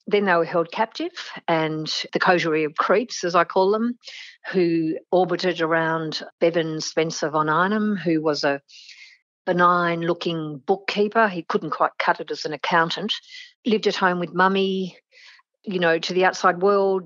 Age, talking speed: 50-69, 160 wpm